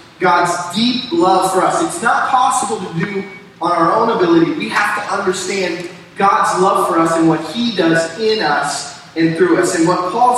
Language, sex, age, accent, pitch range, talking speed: English, male, 30-49, American, 170-245 Hz, 195 wpm